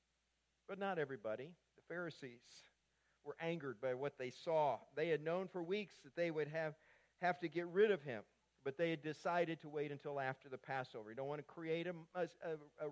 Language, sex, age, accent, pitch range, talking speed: English, male, 50-69, American, 140-185 Hz, 205 wpm